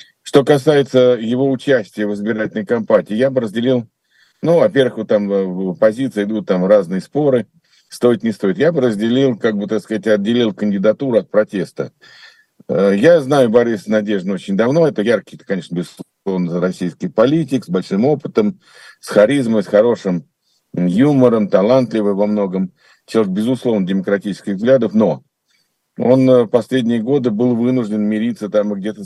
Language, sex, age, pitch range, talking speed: Russian, male, 50-69, 100-130 Hz, 145 wpm